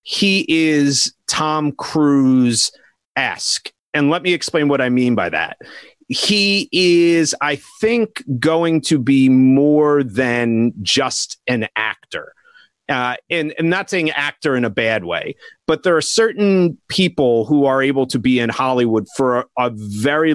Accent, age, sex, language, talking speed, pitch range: American, 30-49, male, English, 150 wpm, 125-160 Hz